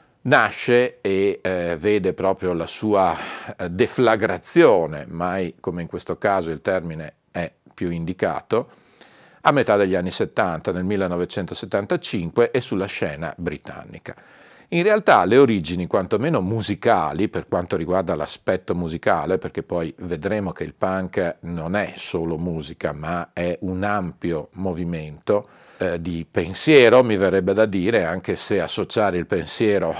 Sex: male